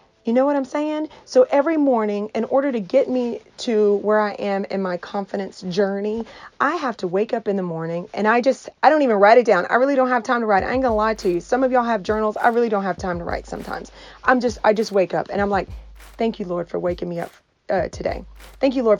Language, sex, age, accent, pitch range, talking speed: English, female, 40-59, American, 195-250 Hz, 270 wpm